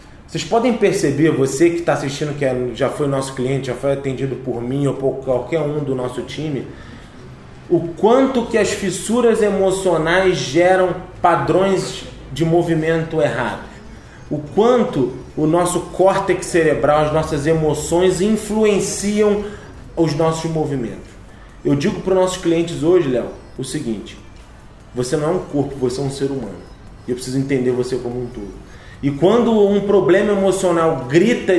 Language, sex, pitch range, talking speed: Portuguese, male, 135-185 Hz, 155 wpm